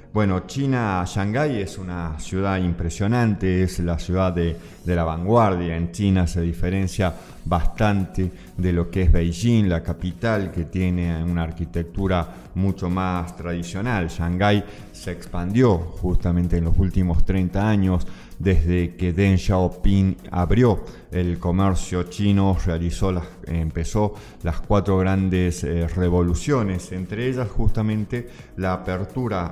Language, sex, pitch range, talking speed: Spanish, male, 85-100 Hz, 130 wpm